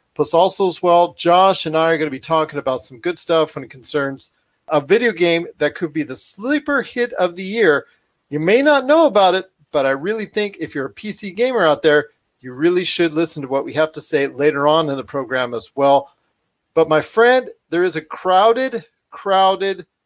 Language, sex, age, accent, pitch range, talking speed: English, male, 40-59, American, 150-190 Hz, 220 wpm